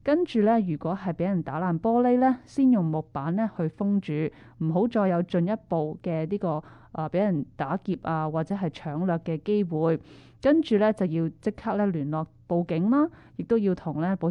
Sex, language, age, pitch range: female, Chinese, 20-39, 165-220 Hz